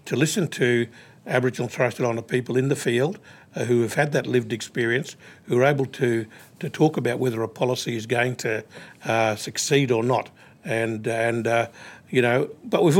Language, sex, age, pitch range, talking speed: English, male, 50-69, 120-140 Hz, 195 wpm